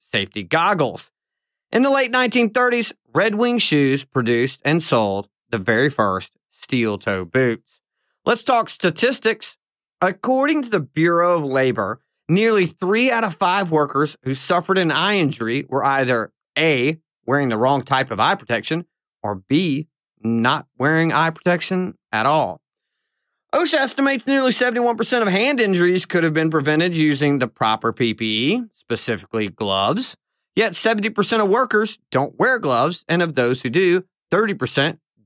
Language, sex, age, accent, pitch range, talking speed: English, male, 30-49, American, 130-220 Hz, 145 wpm